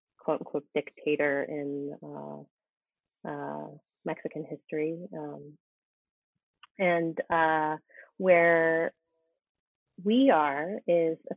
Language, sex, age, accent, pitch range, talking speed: English, female, 30-49, American, 155-185 Hz, 85 wpm